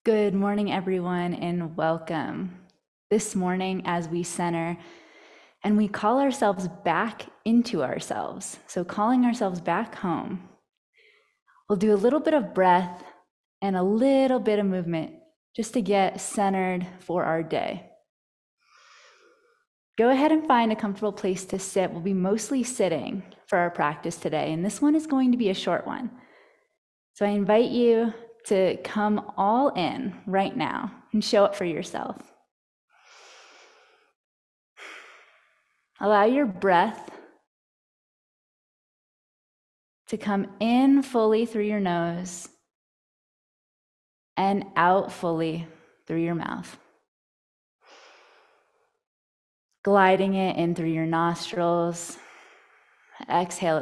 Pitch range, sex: 175-235 Hz, female